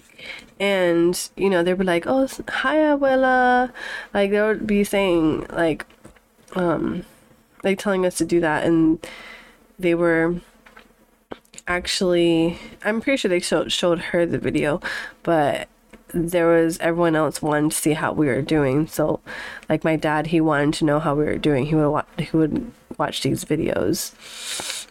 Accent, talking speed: American, 160 wpm